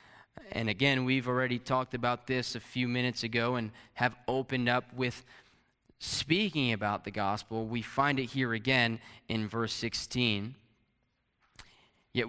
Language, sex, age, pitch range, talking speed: English, male, 20-39, 105-125 Hz, 140 wpm